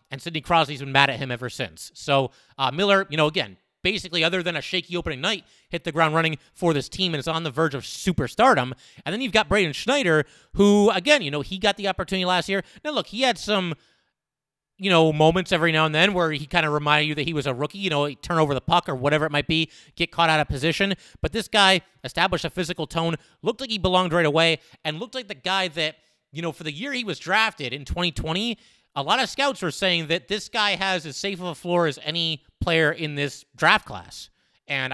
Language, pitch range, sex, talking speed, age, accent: English, 145-190 Hz, male, 250 wpm, 30-49, American